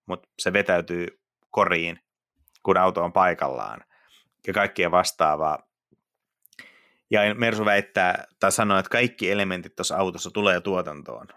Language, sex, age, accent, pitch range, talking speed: Finnish, male, 30-49, native, 85-105 Hz, 120 wpm